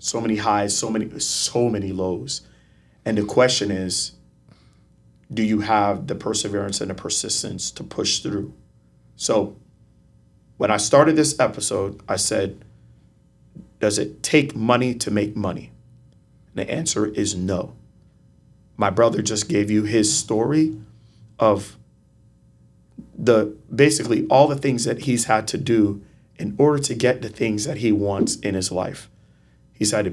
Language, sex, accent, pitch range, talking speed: English, male, American, 95-120 Hz, 150 wpm